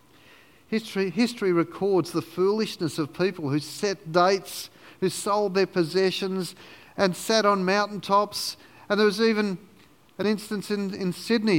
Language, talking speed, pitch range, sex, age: English, 140 wpm, 140-195 Hz, male, 50-69